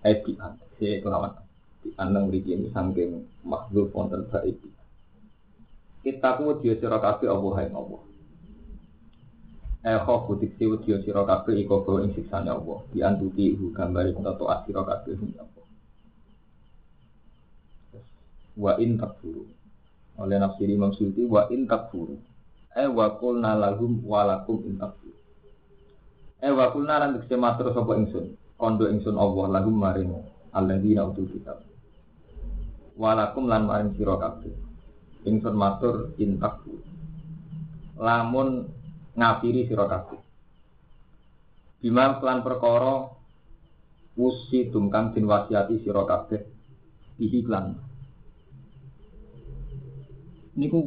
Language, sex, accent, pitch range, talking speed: Indonesian, male, native, 100-130 Hz, 110 wpm